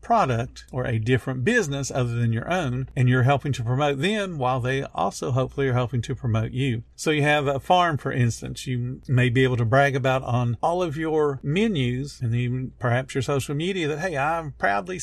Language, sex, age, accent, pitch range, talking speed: English, male, 50-69, American, 125-155 Hz, 210 wpm